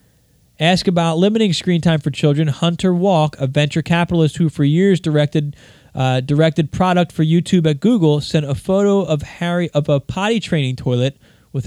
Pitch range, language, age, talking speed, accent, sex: 130-165 Hz, English, 20-39, 175 wpm, American, male